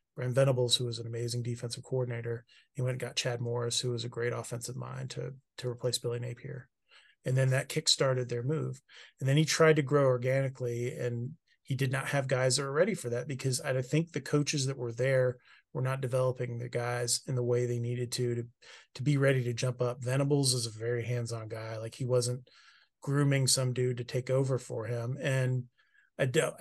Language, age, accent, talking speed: English, 30-49, American, 215 wpm